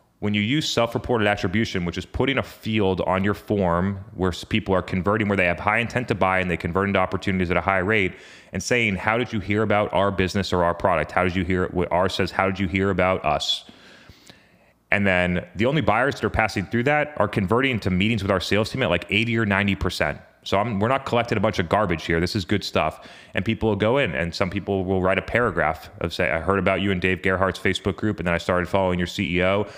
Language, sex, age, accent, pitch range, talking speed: English, male, 30-49, American, 90-105 Hz, 250 wpm